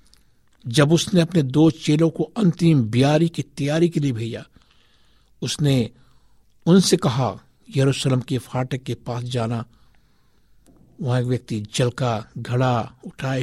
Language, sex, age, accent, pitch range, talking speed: Hindi, male, 60-79, native, 120-155 Hz, 125 wpm